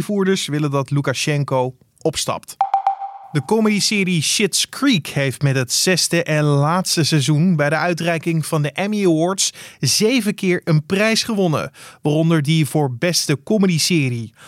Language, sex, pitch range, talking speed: Dutch, male, 135-175 Hz, 140 wpm